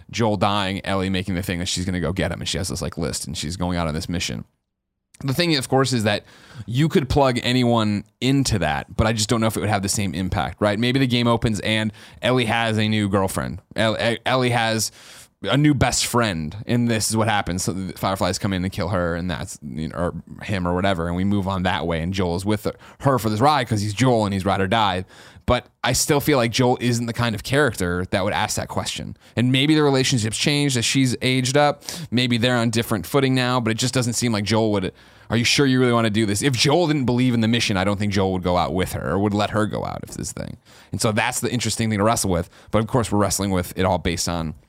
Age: 20-39